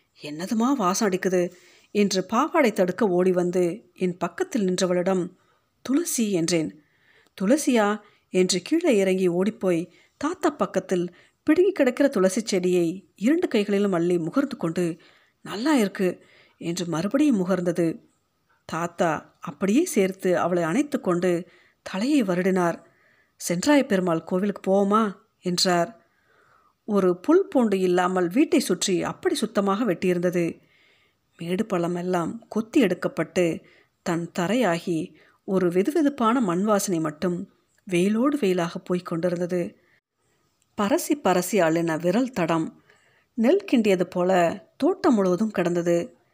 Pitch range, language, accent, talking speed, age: 175-230 Hz, Tamil, native, 105 wpm, 50-69